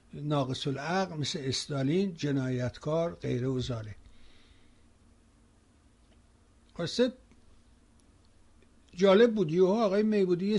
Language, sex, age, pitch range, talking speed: Persian, male, 60-79, 140-200 Hz, 80 wpm